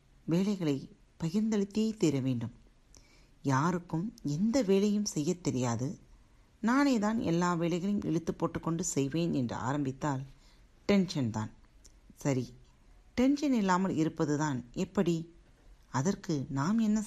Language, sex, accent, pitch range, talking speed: Tamil, female, native, 135-185 Hz, 100 wpm